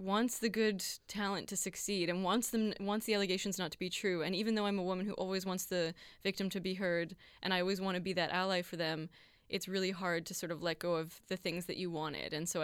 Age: 20-39